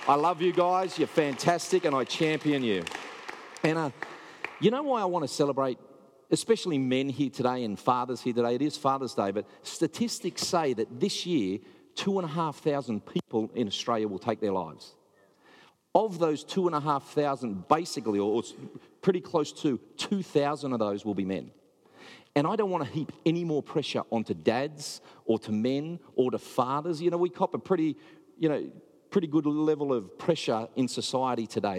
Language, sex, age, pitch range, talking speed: English, male, 40-59, 120-165 Hz, 175 wpm